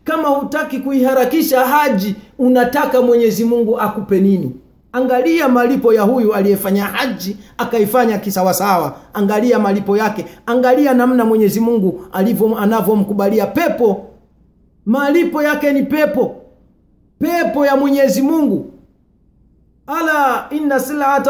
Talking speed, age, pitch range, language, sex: 105 wpm, 40-59, 185-280 Hz, Swahili, male